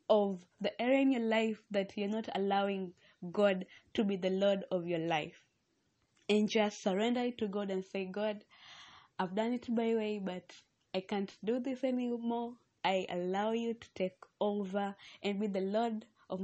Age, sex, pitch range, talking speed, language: 20-39, female, 190-225 Hz, 175 wpm, English